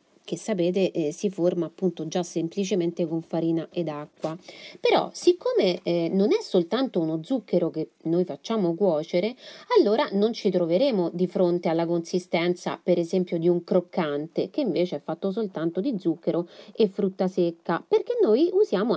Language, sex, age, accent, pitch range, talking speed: Italian, female, 30-49, native, 175-275 Hz, 160 wpm